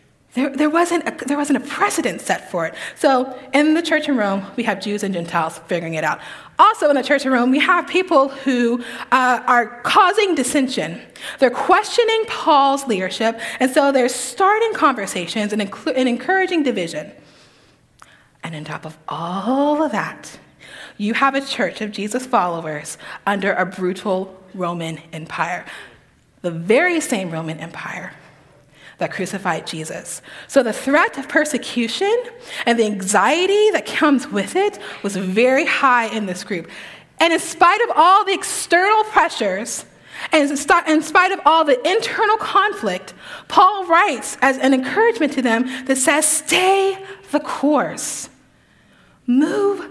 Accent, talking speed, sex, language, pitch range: American, 155 wpm, female, English, 190-305 Hz